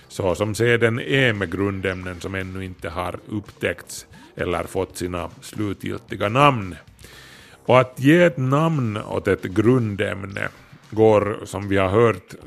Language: Swedish